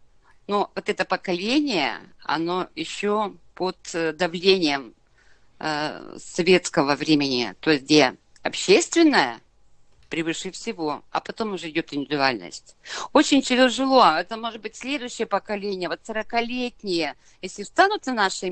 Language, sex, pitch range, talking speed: Russian, female, 160-225 Hz, 115 wpm